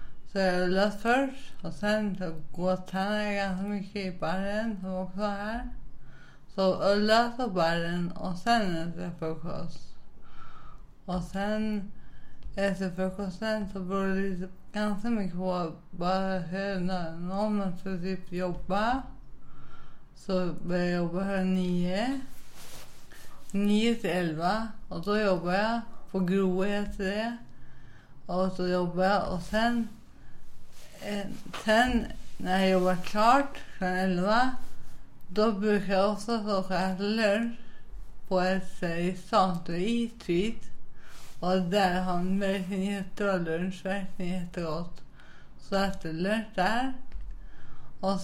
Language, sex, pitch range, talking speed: Swedish, female, 175-205 Hz, 115 wpm